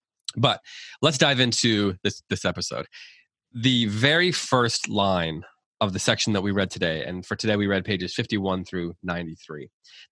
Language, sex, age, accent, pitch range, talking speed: English, male, 20-39, American, 95-125 Hz, 160 wpm